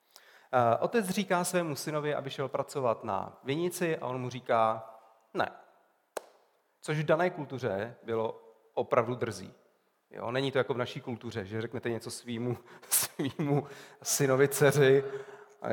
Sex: male